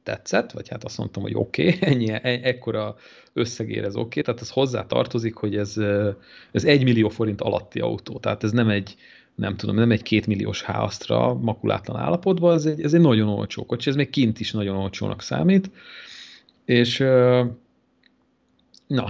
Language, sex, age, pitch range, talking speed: Hungarian, male, 40-59, 105-125 Hz, 170 wpm